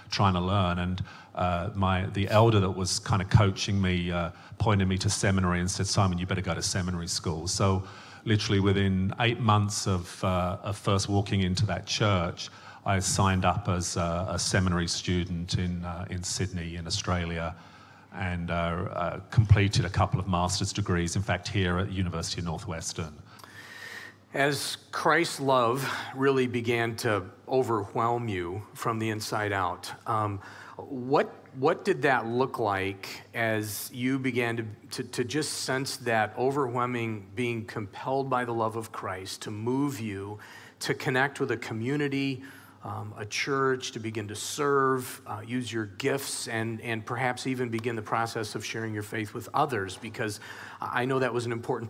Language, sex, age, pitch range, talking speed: English, male, 40-59, 95-120 Hz, 170 wpm